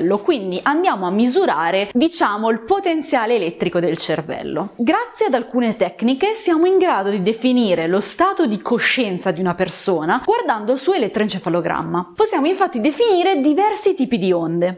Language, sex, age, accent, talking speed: Italian, female, 20-39, native, 150 wpm